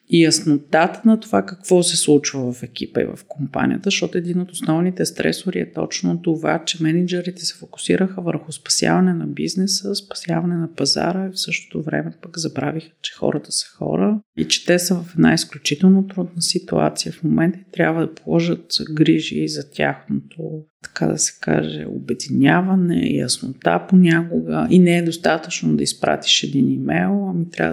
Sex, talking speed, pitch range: female, 165 wpm, 150-190 Hz